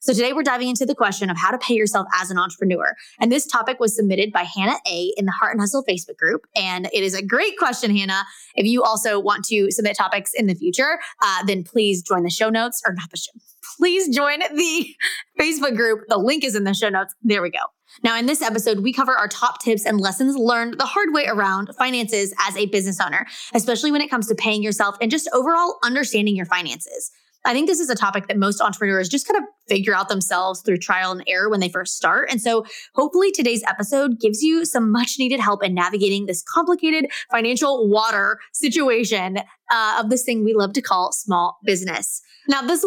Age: 20-39